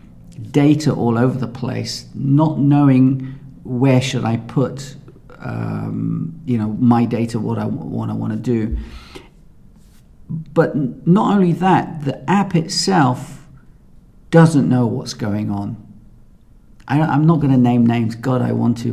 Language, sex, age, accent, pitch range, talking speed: English, male, 40-59, British, 120-145 Hz, 145 wpm